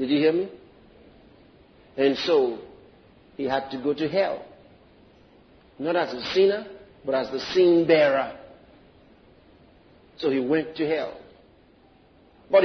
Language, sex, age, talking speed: French, male, 50-69, 130 wpm